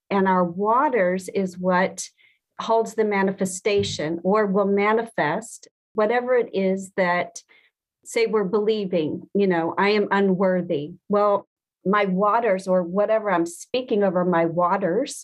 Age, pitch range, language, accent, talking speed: 40-59, 180-220 Hz, English, American, 130 wpm